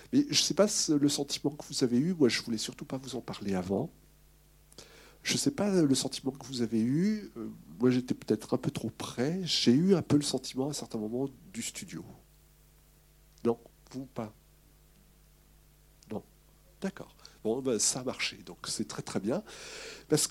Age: 50-69